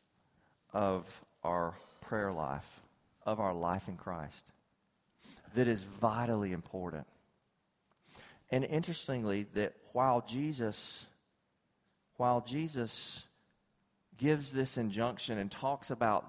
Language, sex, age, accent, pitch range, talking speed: English, male, 40-59, American, 105-140 Hz, 95 wpm